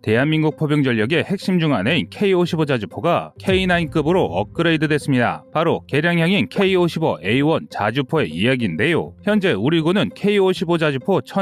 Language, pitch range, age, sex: Korean, 135-175 Hz, 30-49, male